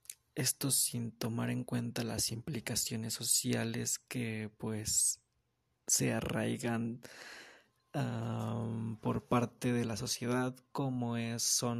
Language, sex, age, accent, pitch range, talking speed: Spanish, male, 20-39, Mexican, 115-130 Hz, 95 wpm